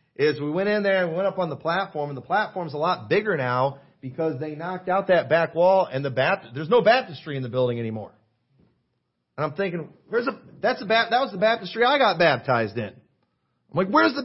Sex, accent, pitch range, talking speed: male, American, 130-180 Hz, 235 wpm